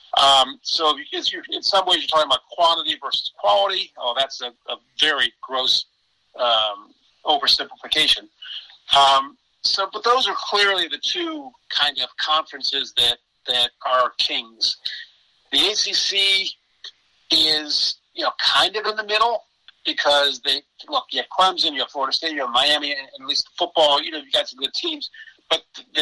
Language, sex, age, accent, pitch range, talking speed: English, male, 50-69, American, 135-195 Hz, 160 wpm